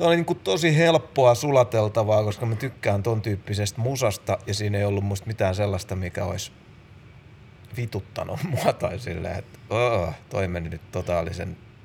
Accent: native